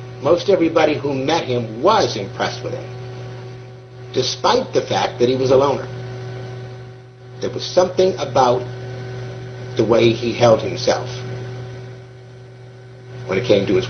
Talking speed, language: 135 wpm, English